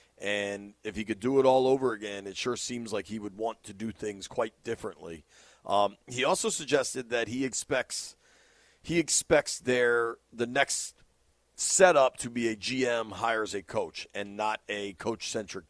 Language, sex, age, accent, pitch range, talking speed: English, male, 40-59, American, 100-125 Hz, 175 wpm